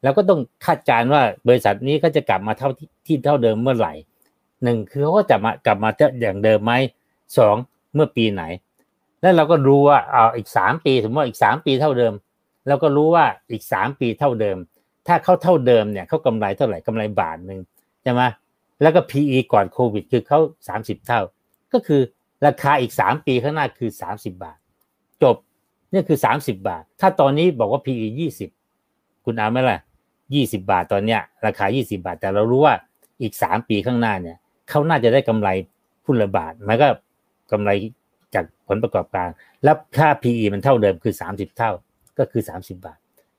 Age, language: 60-79, Thai